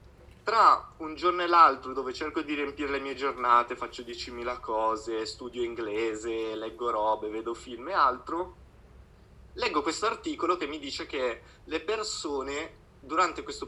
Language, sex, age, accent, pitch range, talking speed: Italian, male, 20-39, native, 120-175 Hz, 150 wpm